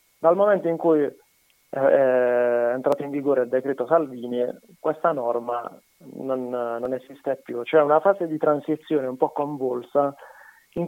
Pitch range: 130-155 Hz